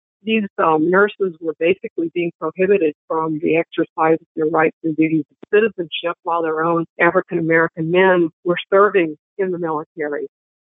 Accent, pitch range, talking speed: American, 165-205 Hz, 150 wpm